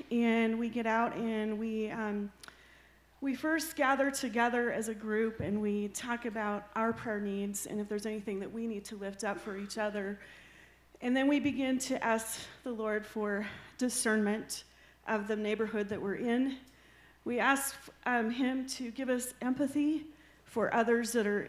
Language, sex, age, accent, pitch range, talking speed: English, female, 40-59, American, 210-245 Hz, 175 wpm